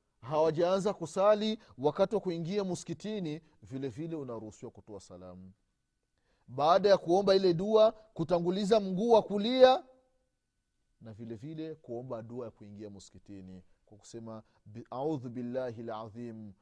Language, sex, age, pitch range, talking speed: Swahili, male, 30-49, 110-155 Hz, 120 wpm